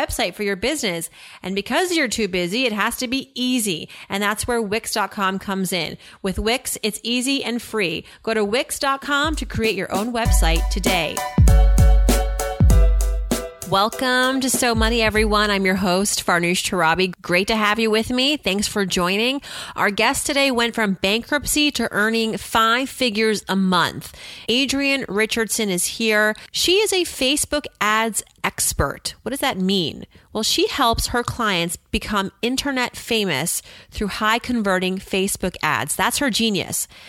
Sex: female